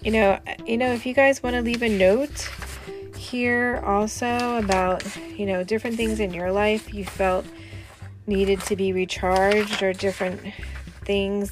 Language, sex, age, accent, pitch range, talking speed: English, female, 30-49, American, 175-215 Hz, 160 wpm